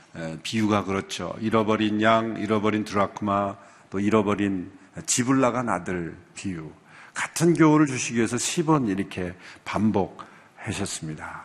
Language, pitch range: Korean, 105-140 Hz